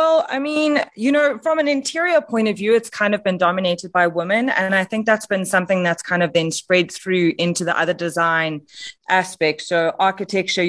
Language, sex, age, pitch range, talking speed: English, female, 30-49, 160-195 Hz, 210 wpm